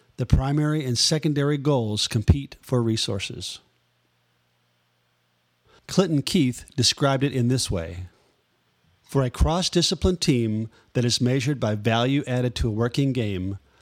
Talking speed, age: 125 wpm, 40-59